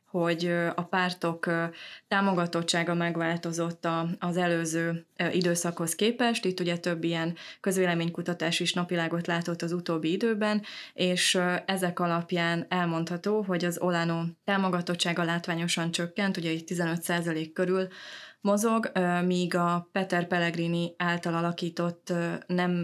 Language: Hungarian